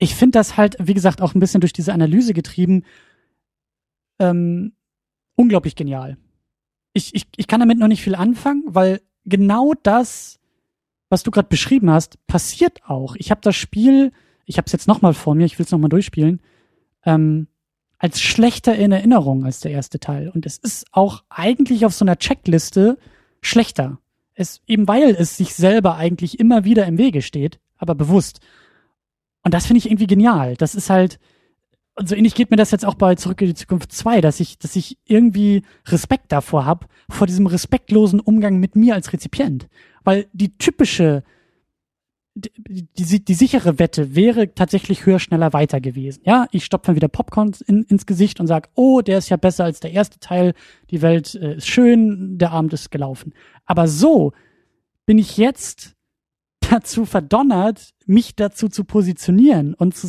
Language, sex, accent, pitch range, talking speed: German, male, German, 165-215 Hz, 180 wpm